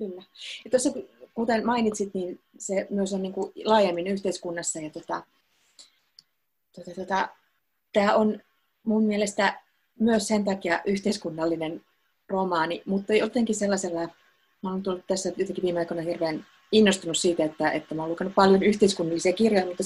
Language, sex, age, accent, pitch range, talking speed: Finnish, female, 30-49, native, 175-210 Hz, 135 wpm